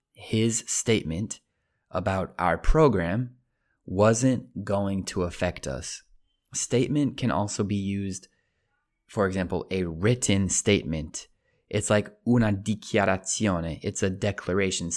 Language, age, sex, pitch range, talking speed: Italian, 20-39, male, 90-115 Hz, 110 wpm